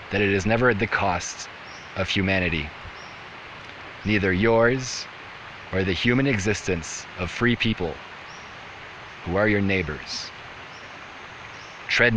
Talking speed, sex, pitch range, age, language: 115 wpm, male, 90-120 Hz, 30-49, English